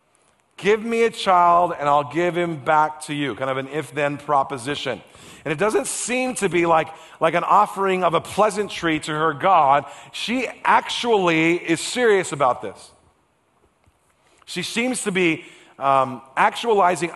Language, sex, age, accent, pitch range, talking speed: English, male, 40-59, American, 145-180 Hz, 155 wpm